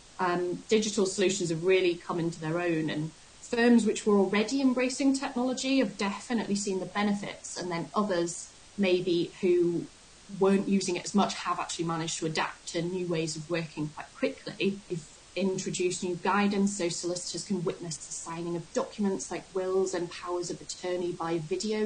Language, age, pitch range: English, 20-39, 170-205 Hz